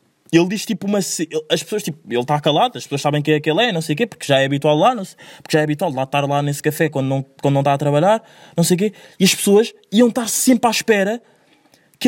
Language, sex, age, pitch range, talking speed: Portuguese, male, 20-39, 140-205 Hz, 280 wpm